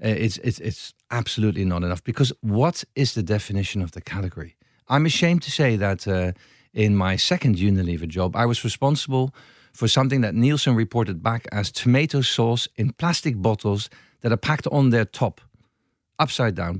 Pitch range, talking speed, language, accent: 105-135 Hz, 170 wpm, English, Dutch